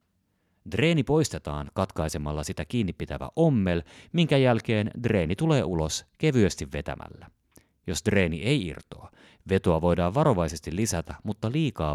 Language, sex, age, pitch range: Finnish, male, 30-49, 75-110 Hz